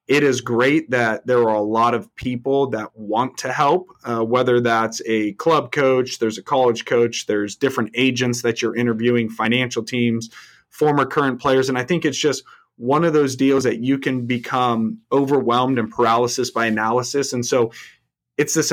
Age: 30-49